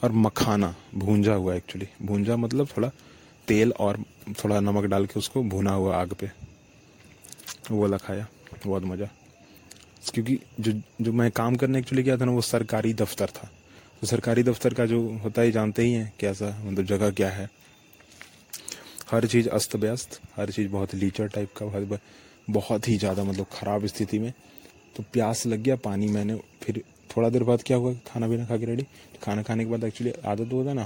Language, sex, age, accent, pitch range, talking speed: English, male, 30-49, Indian, 100-115 Hz, 160 wpm